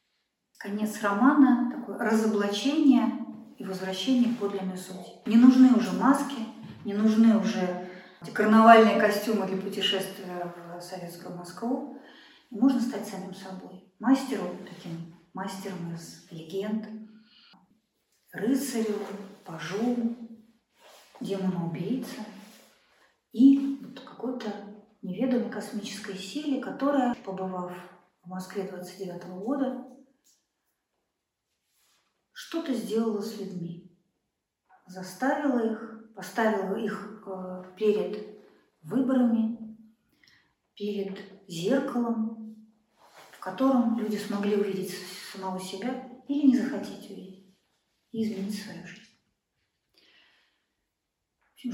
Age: 40-59